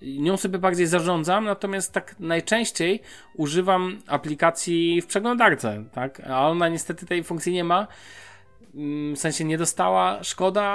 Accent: native